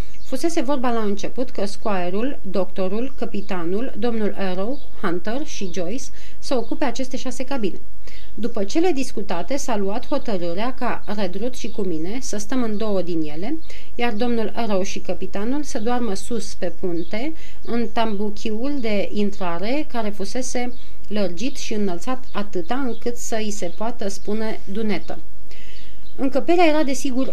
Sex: female